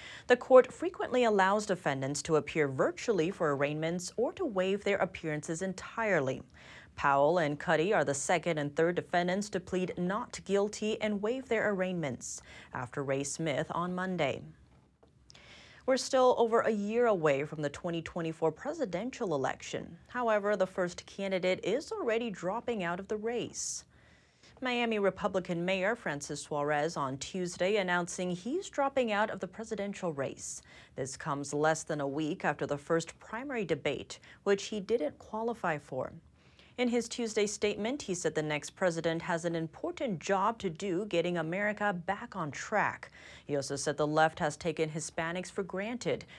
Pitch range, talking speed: 155-215 Hz, 155 wpm